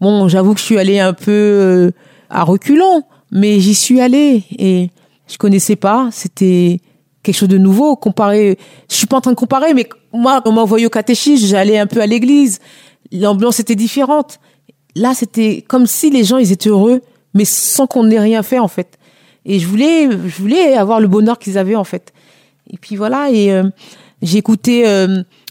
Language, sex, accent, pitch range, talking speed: French, female, French, 190-230 Hz, 200 wpm